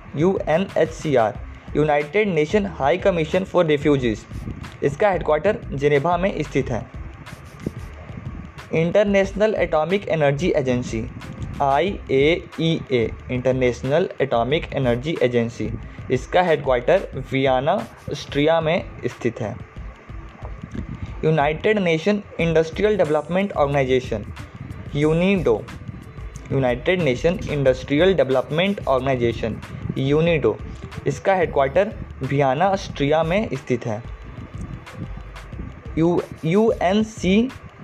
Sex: male